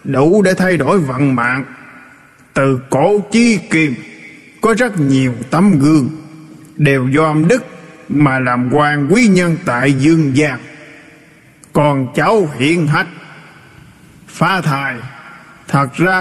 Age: 20-39